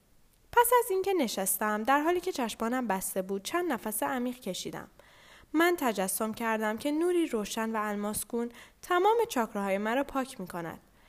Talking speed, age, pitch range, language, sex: 150 wpm, 10-29, 205-300 Hz, Persian, female